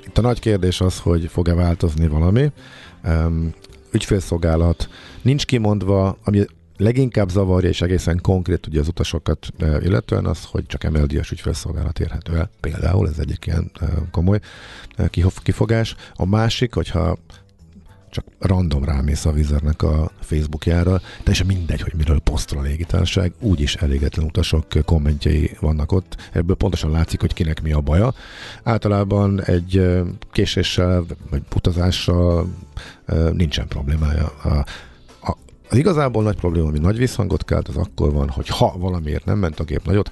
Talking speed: 140 wpm